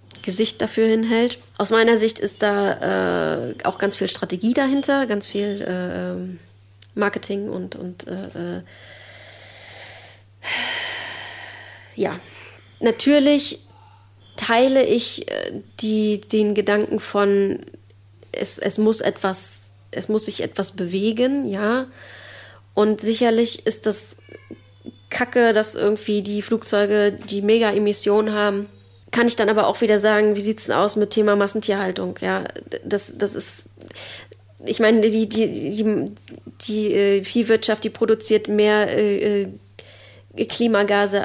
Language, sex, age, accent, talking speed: German, female, 30-49, German, 120 wpm